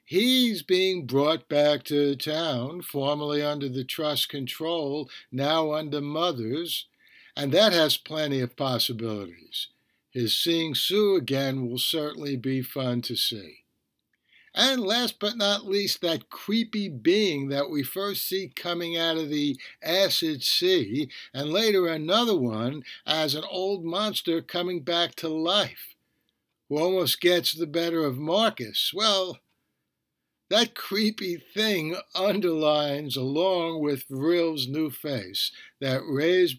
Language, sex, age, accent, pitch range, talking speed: English, male, 60-79, American, 135-175 Hz, 130 wpm